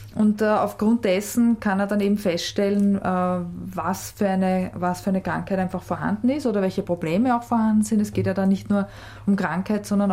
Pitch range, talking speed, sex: 185-210 Hz, 205 wpm, female